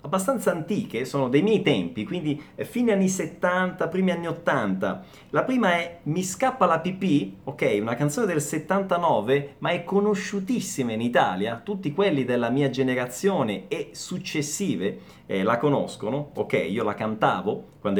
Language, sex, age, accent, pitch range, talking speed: Italian, male, 30-49, native, 140-195 Hz, 155 wpm